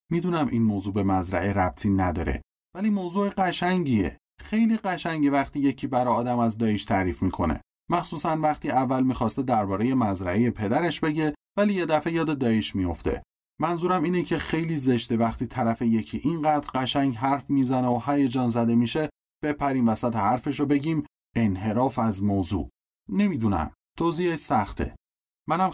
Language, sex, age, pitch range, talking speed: Persian, male, 30-49, 95-140 Hz, 145 wpm